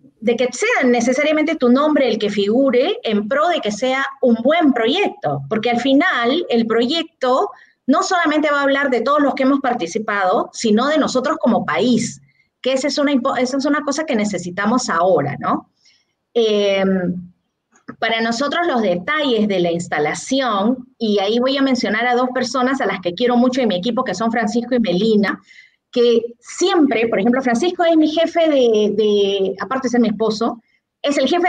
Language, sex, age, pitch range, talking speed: Spanish, female, 30-49, 215-295 Hz, 180 wpm